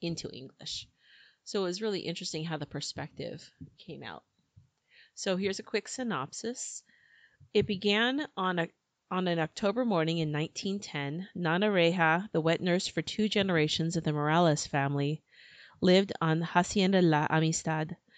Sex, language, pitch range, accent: female, English, 155-195 Hz, American